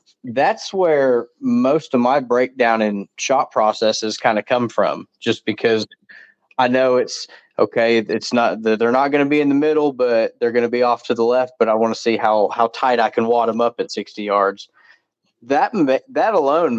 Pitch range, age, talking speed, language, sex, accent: 115-130 Hz, 20-39, 205 wpm, English, male, American